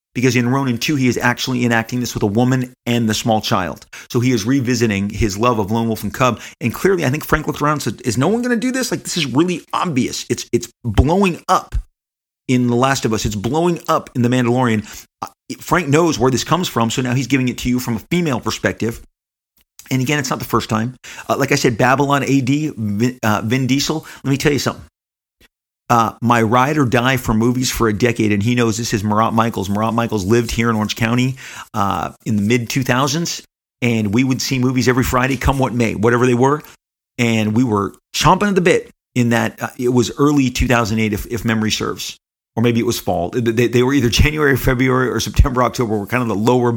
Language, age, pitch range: English, 40-59, 115-135 Hz